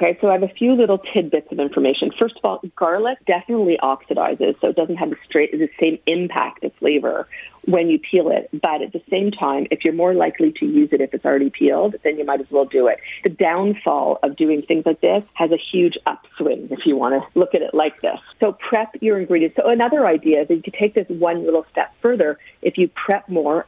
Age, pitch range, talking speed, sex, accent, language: 40-59, 150-210 Hz, 240 wpm, female, American, English